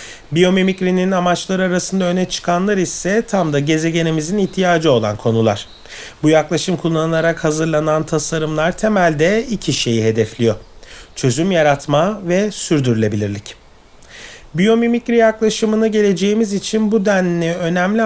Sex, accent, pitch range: male, native, 145-205 Hz